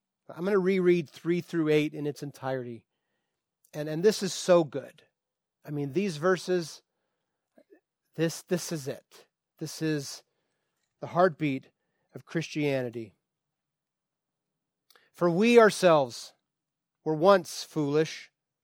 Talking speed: 115 wpm